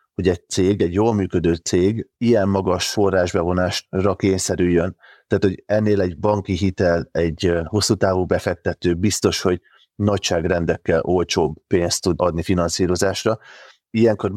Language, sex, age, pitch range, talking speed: Hungarian, male, 30-49, 90-100 Hz, 125 wpm